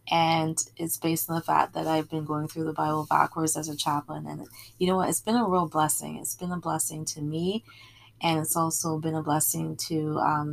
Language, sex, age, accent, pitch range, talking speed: English, female, 20-39, American, 145-170 Hz, 230 wpm